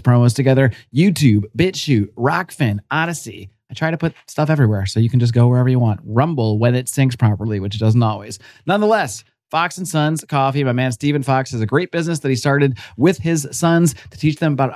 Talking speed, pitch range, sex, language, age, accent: 210 wpm, 115-145 Hz, male, English, 30-49, American